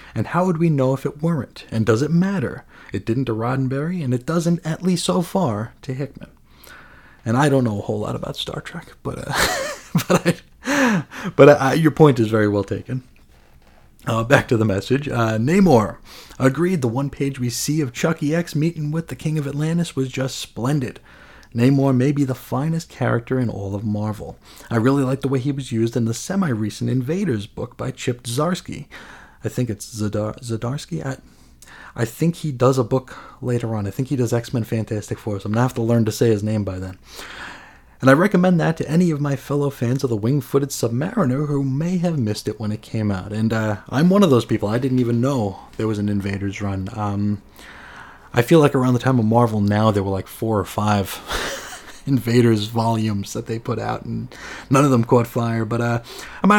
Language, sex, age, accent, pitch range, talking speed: English, male, 30-49, American, 110-145 Hz, 215 wpm